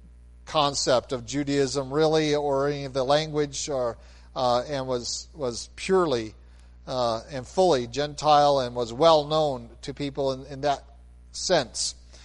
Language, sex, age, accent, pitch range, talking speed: English, male, 40-59, American, 125-170 Hz, 140 wpm